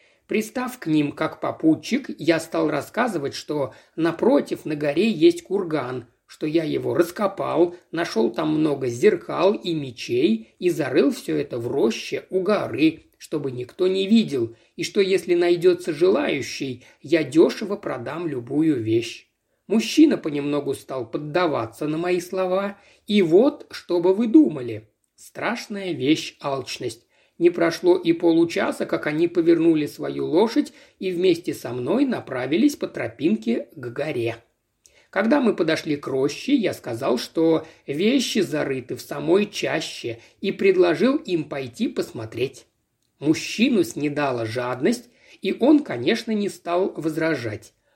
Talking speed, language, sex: 135 wpm, Russian, male